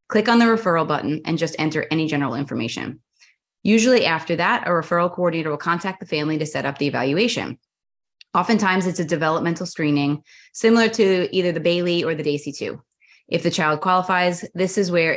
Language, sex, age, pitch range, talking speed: English, female, 20-39, 150-180 Hz, 185 wpm